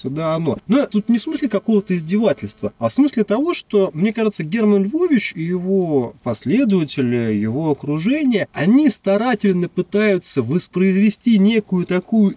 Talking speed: 140 wpm